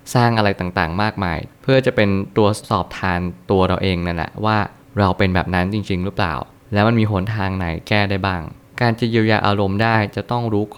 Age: 20-39